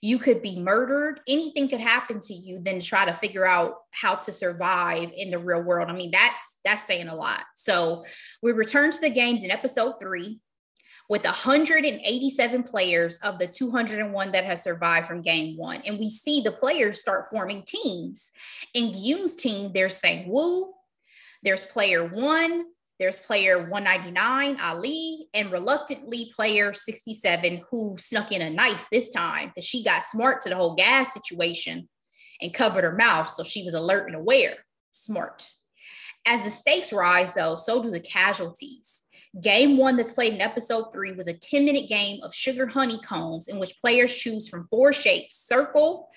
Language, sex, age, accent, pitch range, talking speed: English, female, 20-39, American, 185-255 Hz, 180 wpm